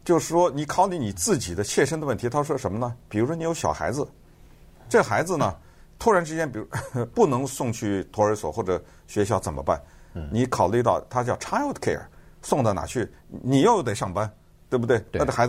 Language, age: Chinese, 50-69